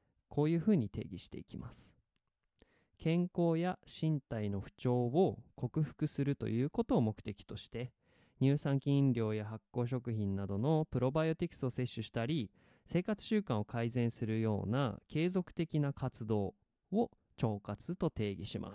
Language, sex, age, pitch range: Japanese, male, 20-39, 110-165 Hz